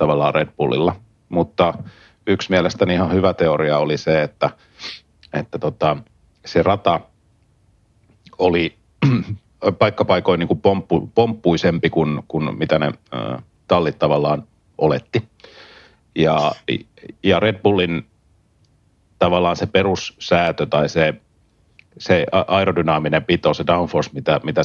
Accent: native